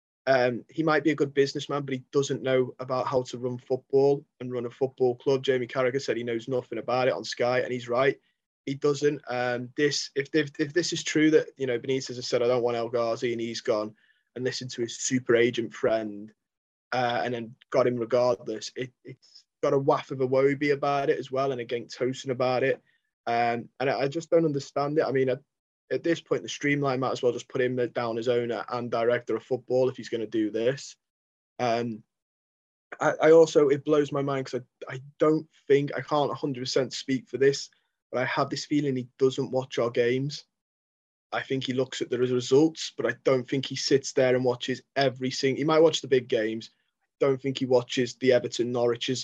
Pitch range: 120-140 Hz